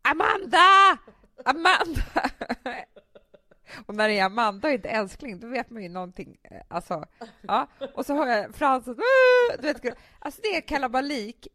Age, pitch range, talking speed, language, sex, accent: 20-39, 215-320 Hz, 150 wpm, English, female, Norwegian